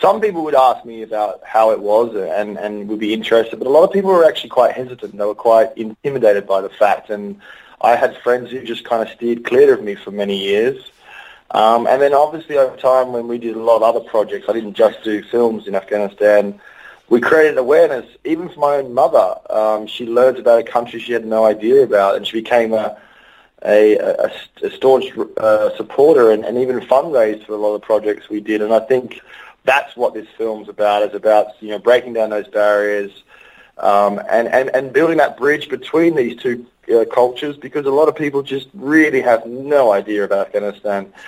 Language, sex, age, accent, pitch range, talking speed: English, male, 20-39, Australian, 105-145 Hz, 215 wpm